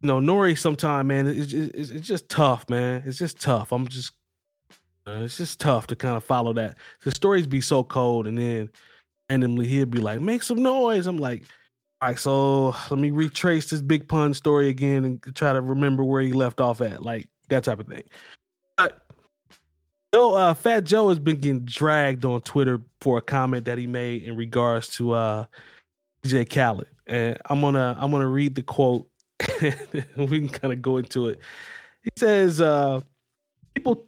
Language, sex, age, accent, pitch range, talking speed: English, male, 20-39, American, 125-160 Hz, 185 wpm